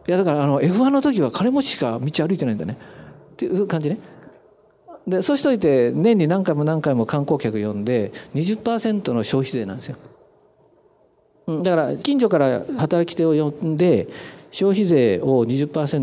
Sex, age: male, 50-69